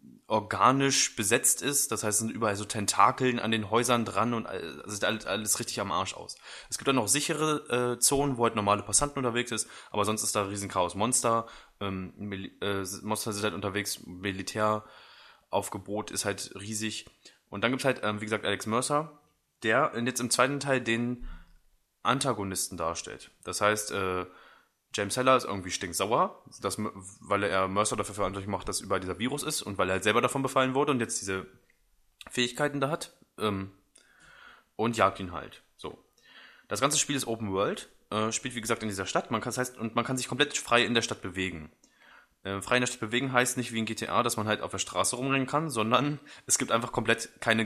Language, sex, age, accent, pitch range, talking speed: English, male, 20-39, German, 100-125 Hz, 205 wpm